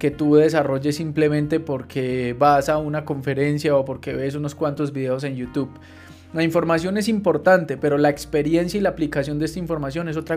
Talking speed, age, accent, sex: 185 wpm, 20-39, Colombian, male